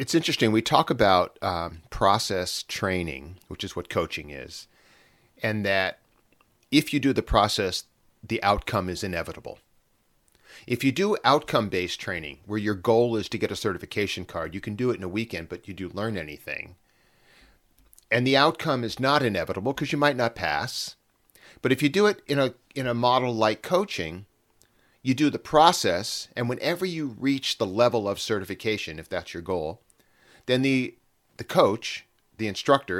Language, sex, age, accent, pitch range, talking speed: English, male, 40-59, American, 95-130 Hz, 175 wpm